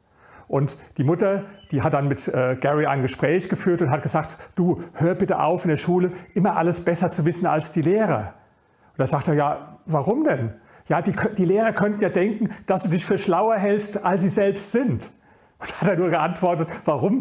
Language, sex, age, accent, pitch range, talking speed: German, male, 40-59, German, 145-195 Hz, 205 wpm